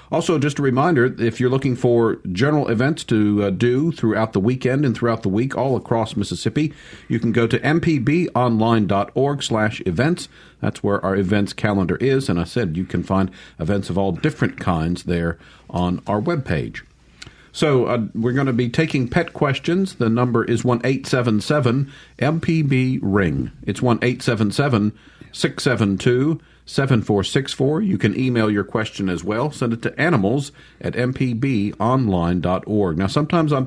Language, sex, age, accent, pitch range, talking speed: English, male, 50-69, American, 100-135 Hz, 150 wpm